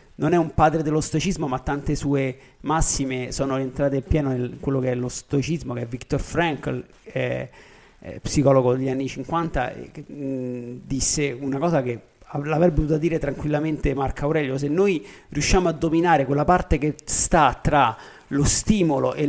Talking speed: 170 wpm